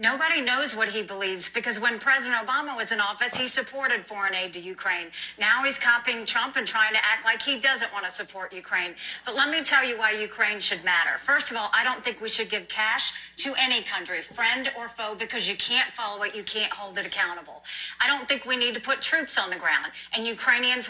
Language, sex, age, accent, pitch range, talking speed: English, female, 40-59, American, 210-255 Hz, 235 wpm